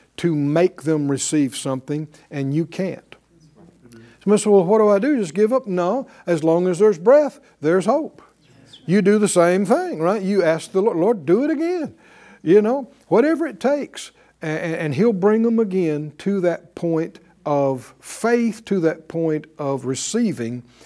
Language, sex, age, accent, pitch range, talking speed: English, male, 60-79, American, 145-215 Hz, 175 wpm